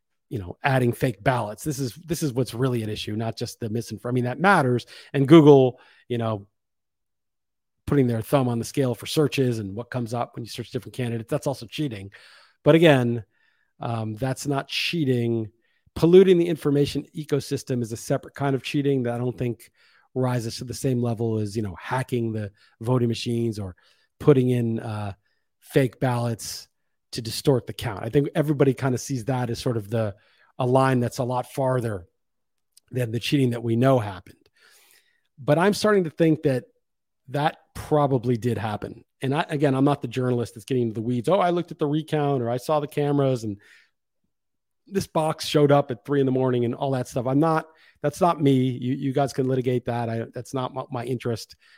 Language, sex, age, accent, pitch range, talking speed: English, male, 40-59, American, 115-145 Hz, 200 wpm